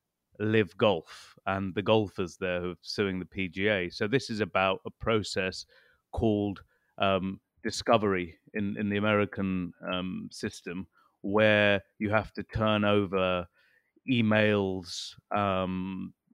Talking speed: 125 wpm